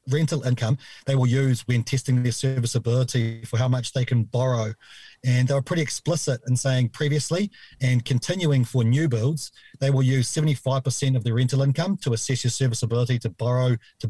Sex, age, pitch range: male, 30-49, 120-135 Hz